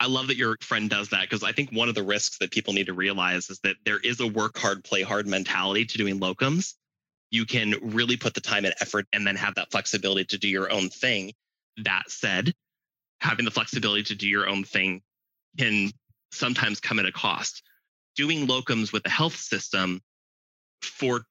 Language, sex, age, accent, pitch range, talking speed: English, male, 20-39, American, 95-120 Hz, 205 wpm